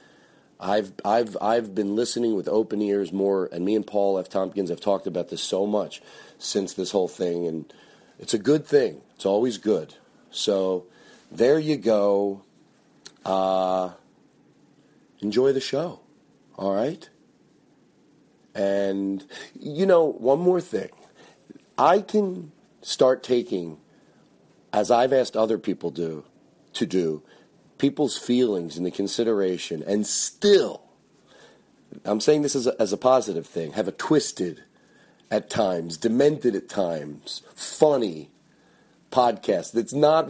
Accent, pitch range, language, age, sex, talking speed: American, 95-130 Hz, English, 40-59, male, 130 wpm